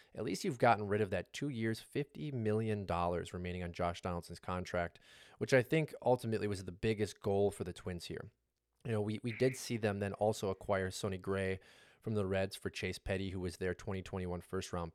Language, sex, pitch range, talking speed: English, male, 95-115 Hz, 210 wpm